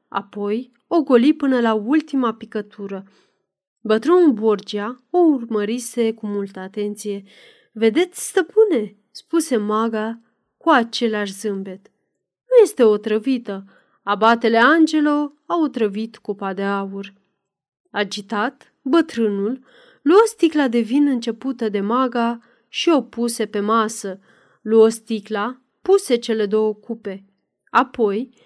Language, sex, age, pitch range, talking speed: Romanian, female, 30-49, 210-275 Hz, 115 wpm